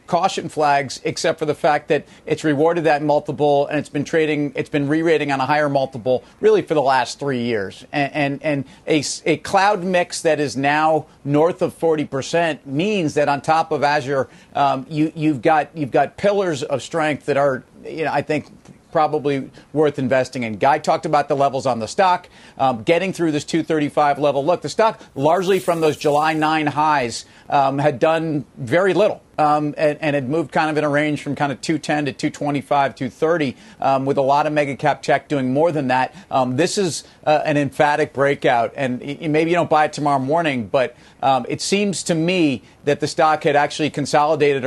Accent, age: American, 40-59